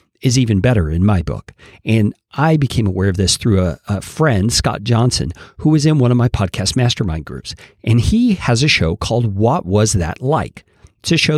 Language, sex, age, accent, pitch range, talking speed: English, male, 50-69, American, 100-130 Hz, 210 wpm